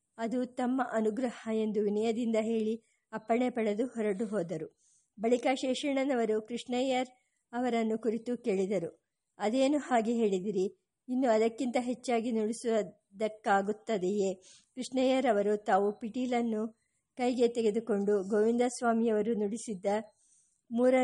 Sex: male